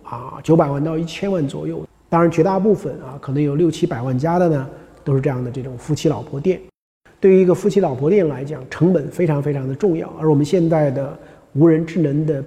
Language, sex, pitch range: Chinese, male, 140-175 Hz